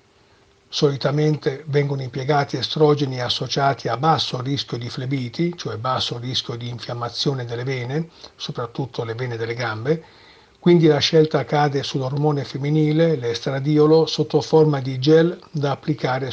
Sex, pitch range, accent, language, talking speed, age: male, 125-150 Hz, native, Italian, 130 wpm, 50-69